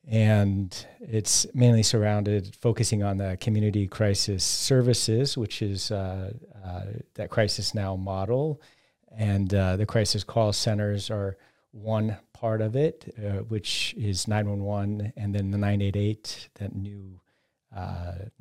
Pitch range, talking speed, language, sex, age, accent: 95-115 Hz, 130 wpm, English, male, 40-59, American